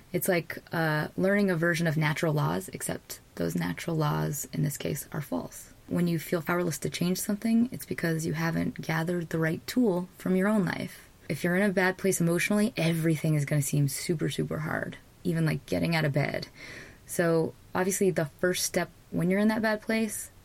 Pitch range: 150-185 Hz